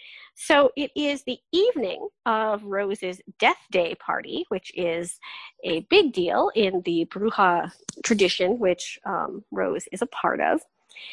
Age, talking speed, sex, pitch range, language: 40-59, 140 wpm, female, 200-290 Hz, English